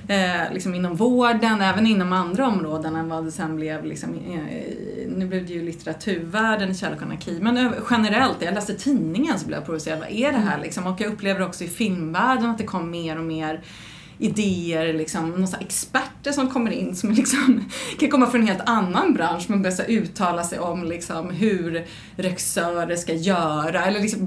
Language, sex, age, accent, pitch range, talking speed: Swedish, female, 30-49, native, 180-245 Hz, 175 wpm